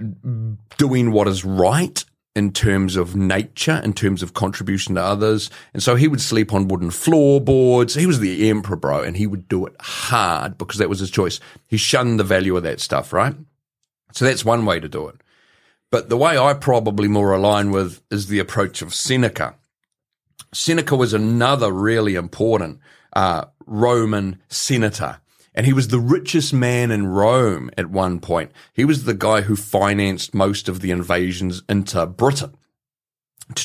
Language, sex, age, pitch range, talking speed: English, male, 40-59, 95-125 Hz, 175 wpm